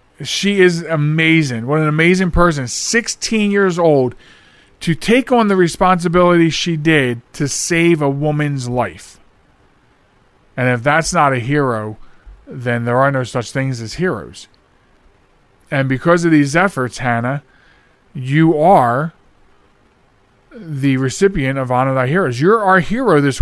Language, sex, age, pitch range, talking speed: English, male, 40-59, 130-180 Hz, 140 wpm